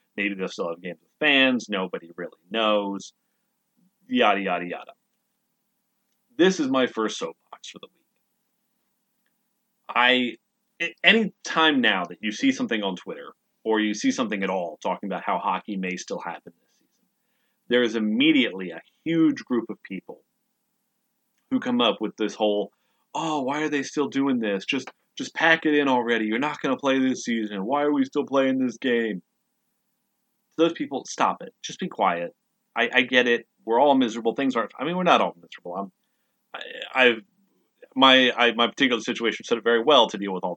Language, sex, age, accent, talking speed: English, male, 30-49, American, 185 wpm